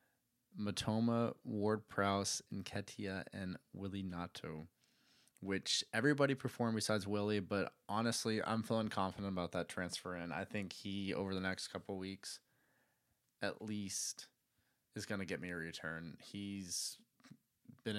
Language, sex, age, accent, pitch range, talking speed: English, male, 20-39, American, 95-115 Hz, 130 wpm